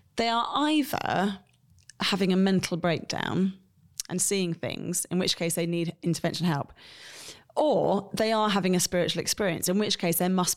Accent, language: British, English